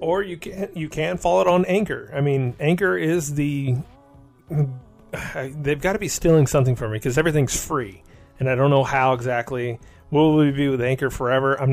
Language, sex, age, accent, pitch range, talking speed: English, male, 30-49, American, 125-160 Hz, 195 wpm